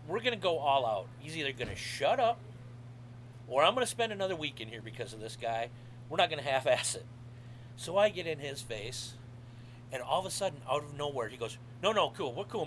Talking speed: 245 wpm